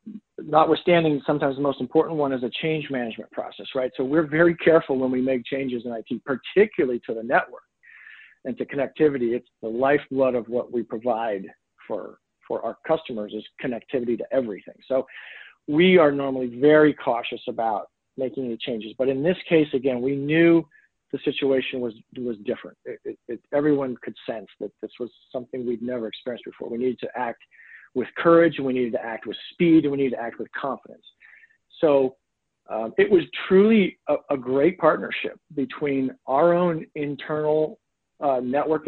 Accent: American